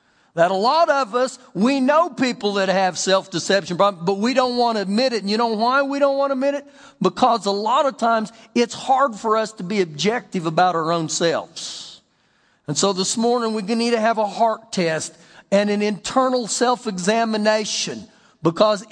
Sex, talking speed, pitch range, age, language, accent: male, 195 wpm, 200-255 Hz, 50-69, English, American